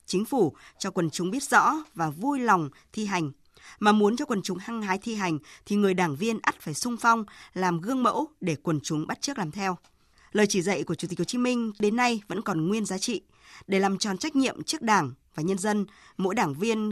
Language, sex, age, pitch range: Vietnamese, female, 20-39, 175-225 Hz